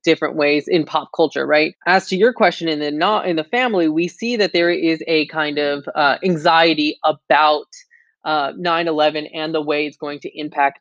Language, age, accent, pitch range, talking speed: English, 20-39, American, 150-175 Hz, 200 wpm